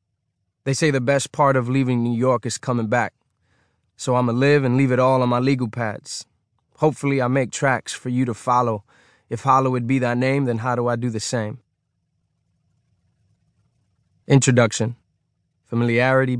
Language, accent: English, American